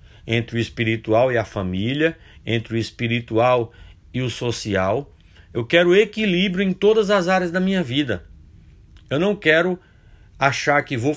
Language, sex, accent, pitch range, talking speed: Portuguese, male, Brazilian, 110-165 Hz, 150 wpm